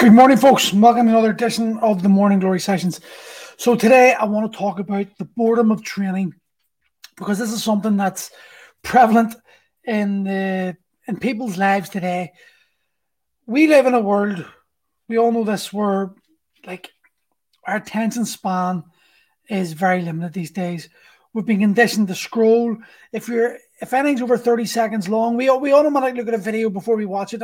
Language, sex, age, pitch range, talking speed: English, male, 30-49, 195-235 Hz, 175 wpm